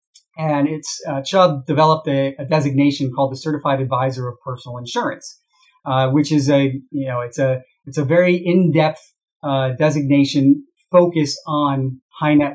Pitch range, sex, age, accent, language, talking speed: 140-170 Hz, male, 40-59, American, English, 155 wpm